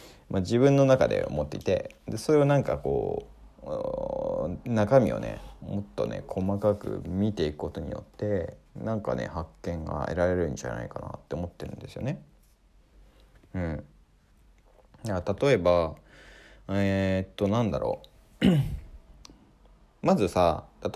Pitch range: 90-135 Hz